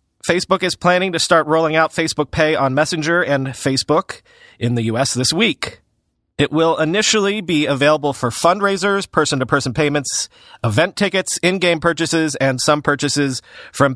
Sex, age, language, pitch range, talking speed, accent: male, 40-59, English, 135-170 Hz, 160 wpm, American